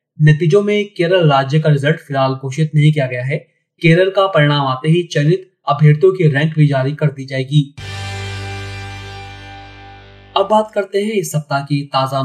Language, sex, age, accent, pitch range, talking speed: Hindi, male, 30-49, native, 140-170 Hz, 165 wpm